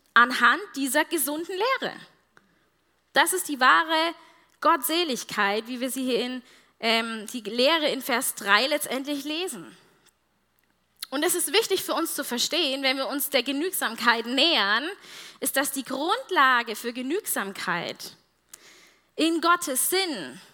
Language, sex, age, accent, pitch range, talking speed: German, female, 20-39, German, 255-330 Hz, 130 wpm